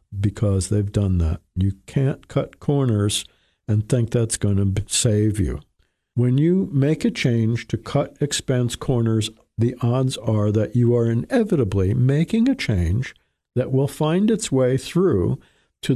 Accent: American